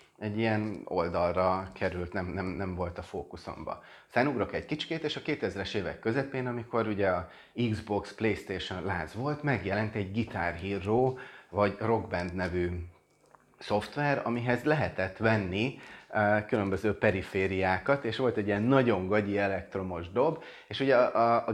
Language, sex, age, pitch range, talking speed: Hungarian, male, 30-49, 95-120 Hz, 145 wpm